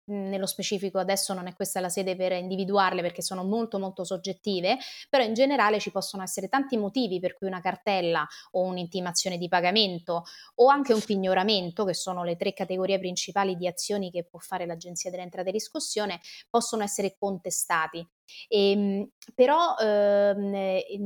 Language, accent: Italian, native